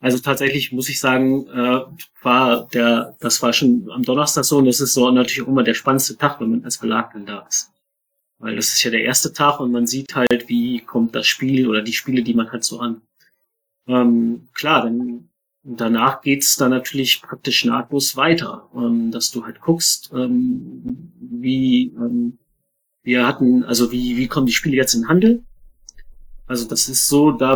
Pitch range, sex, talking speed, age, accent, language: 125-160 Hz, male, 195 wpm, 30-49, German, German